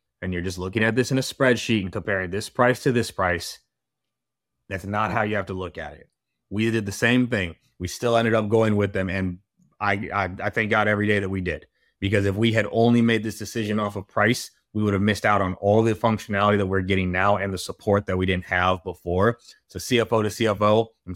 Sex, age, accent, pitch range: male, 30-49, American, 95-115 Hz